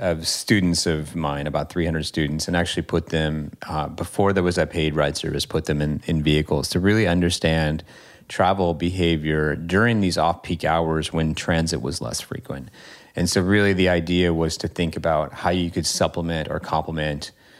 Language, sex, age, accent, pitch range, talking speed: English, male, 30-49, American, 80-90 Hz, 180 wpm